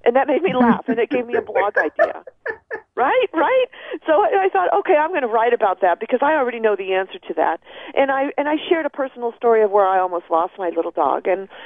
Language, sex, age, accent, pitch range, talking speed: English, female, 40-59, American, 195-270 Hz, 250 wpm